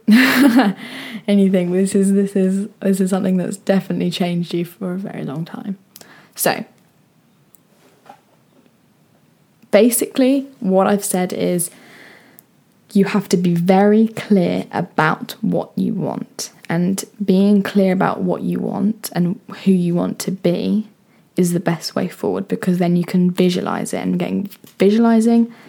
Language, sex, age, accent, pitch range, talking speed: English, female, 10-29, British, 185-220 Hz, 140 wpm